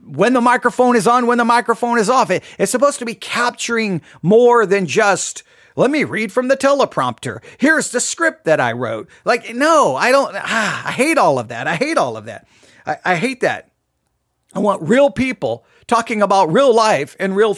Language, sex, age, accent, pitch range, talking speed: English, male, 40-59, American, 170-240 Hz, 200 wpm